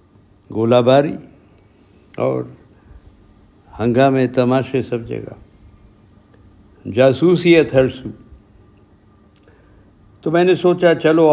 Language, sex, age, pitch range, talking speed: Urdu, male, 60-79, 100-140 Hz, 85 wpm